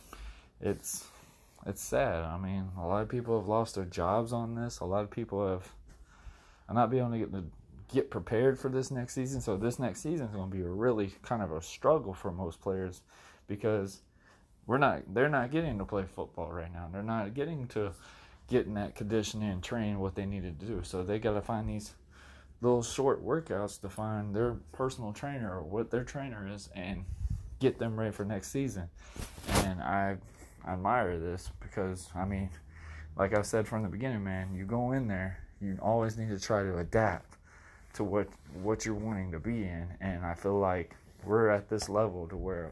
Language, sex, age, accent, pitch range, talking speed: English, male, 20-39, American, 90-110 Hz, 200 wpm